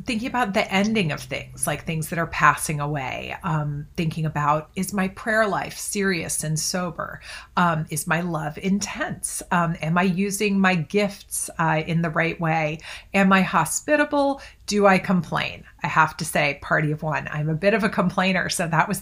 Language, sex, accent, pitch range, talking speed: English, female, American, 155-195 Hz, 190 wpm